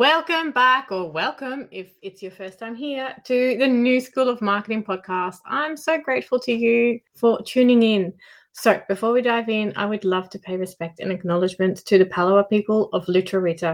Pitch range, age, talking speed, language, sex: 190-255 Hz, 20-39, 190 wpm, English, female